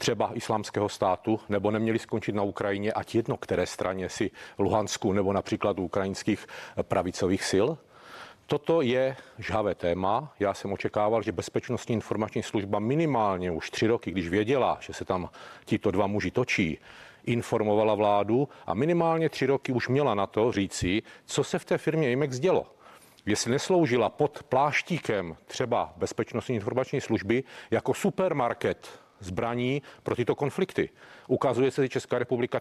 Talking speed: 145 wpm